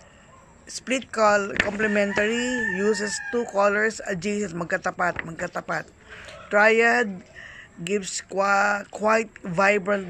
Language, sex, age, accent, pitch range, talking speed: Filipino, female, 20-39, native, 175-210 Hz, 90 wpm